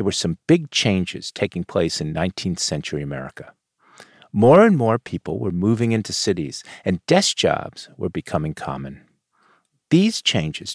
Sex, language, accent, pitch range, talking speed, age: male, English, American, 95-140 Hz, 150 wpm, 50-69